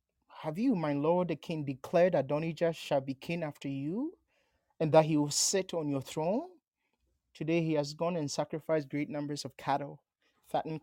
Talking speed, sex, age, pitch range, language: 175 wpm, male, 30-49, 145-175 Hz, English